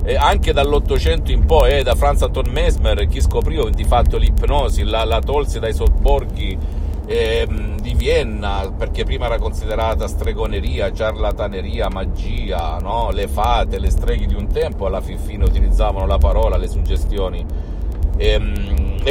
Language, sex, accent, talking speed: Italian, male, native, 145 wpm